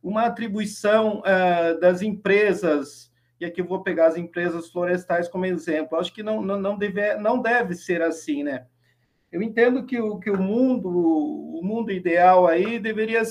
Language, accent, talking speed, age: Portuguese, Brazilian, 140 wpm, 50-69